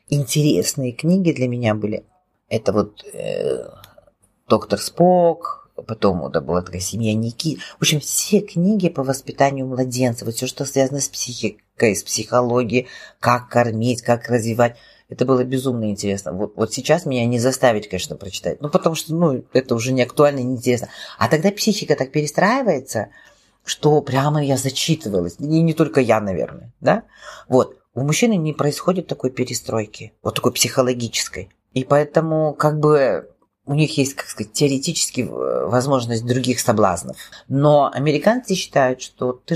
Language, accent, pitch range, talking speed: Russian, native, 120-155 Hz, 155 wpm